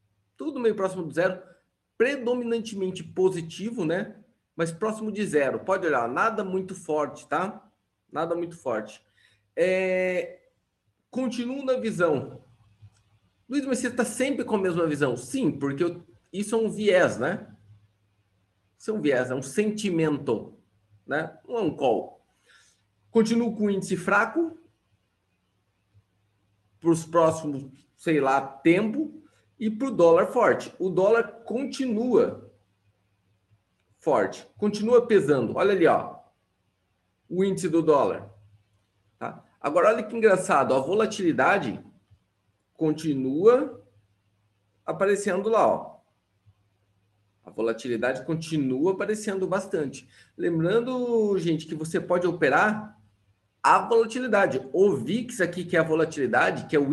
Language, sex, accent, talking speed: Portuguese, male, Brazilian, 125 wpm